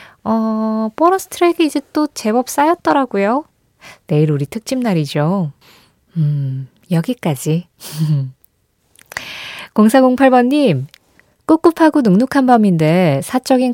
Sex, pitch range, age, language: female, 160-250 Hz, 20-39, Korean